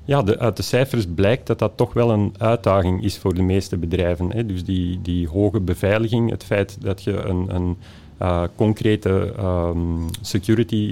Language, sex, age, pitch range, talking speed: Dutch, male, 40-59, 95-115 Hz, 160 wpm